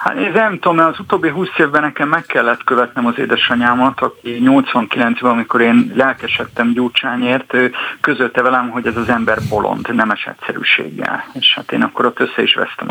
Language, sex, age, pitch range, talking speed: Hungarian, male, 50-69, 115-145 Hz, 180 wpm